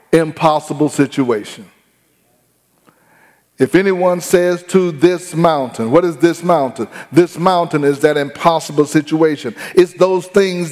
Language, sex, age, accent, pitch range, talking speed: English, male, 40-59, American, 150-185 Hz, 120 wpm